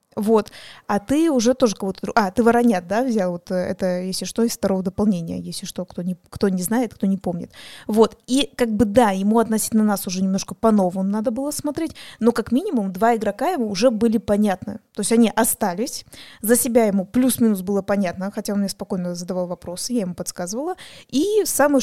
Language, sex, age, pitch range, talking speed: Russian, female, 20-39, 200-245 Hz, 200 wpm